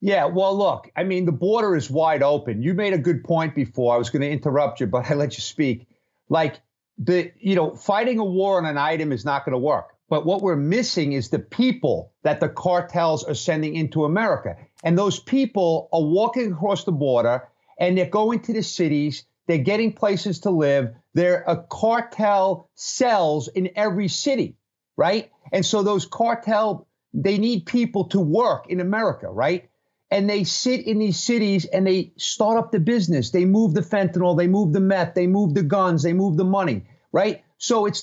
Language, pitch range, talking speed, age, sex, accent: English, 165-210 Hz, 200 wpm, 50-69, male, American